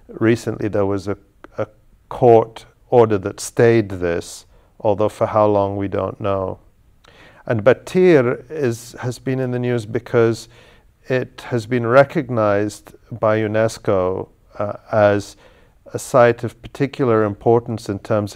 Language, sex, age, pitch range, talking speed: English, male, 50-69, 100-115 Hz, 130 wpm